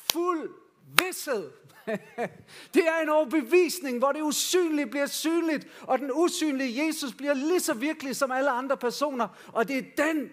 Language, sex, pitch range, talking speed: Danish, male, 200-275 Hz, 155 wpm